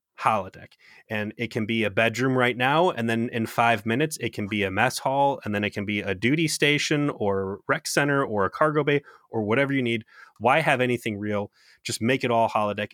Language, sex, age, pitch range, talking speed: English, male, 30-49, 105-130 Hz, 225 wpm